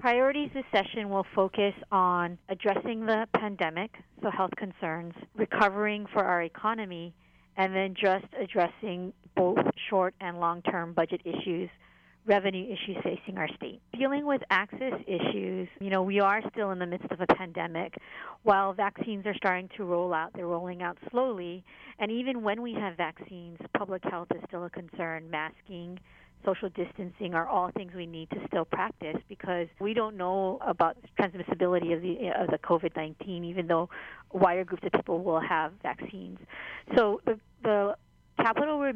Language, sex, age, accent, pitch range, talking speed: English, female, 50-69, American, 180-210 Hz, 160 wpm